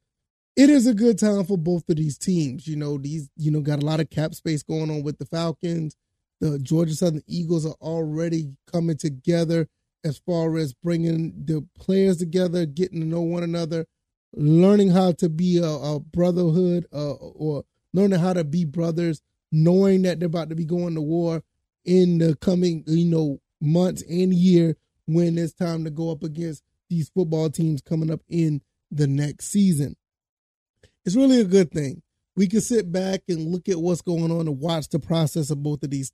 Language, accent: English, American